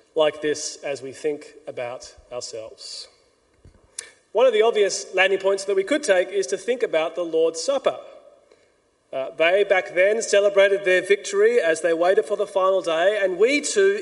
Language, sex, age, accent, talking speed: English, male, 30-49, Australian, 175 wpm